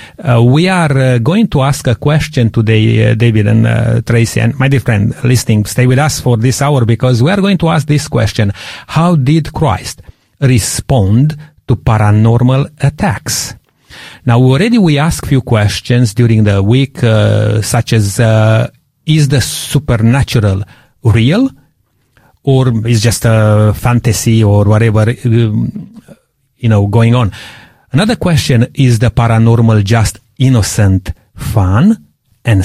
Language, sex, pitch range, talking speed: English, male, 110-130 Hz, 145 wpm